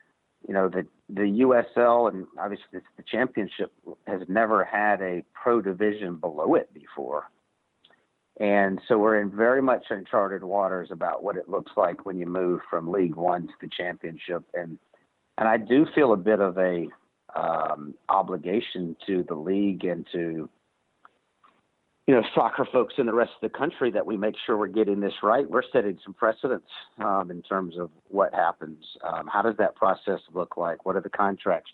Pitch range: 90-100 Hz